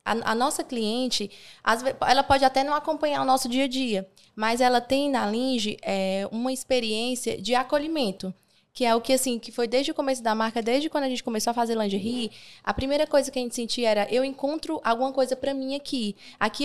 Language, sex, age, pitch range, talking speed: Portuguese, female, 20-39, 215-260 Hz, 225 wpm